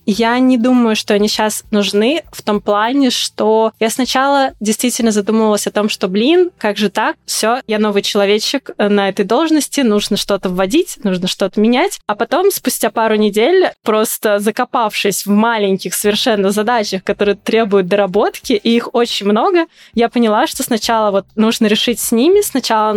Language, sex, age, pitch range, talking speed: Russian, female, 20-39, 205-245 Hz, 165 wpm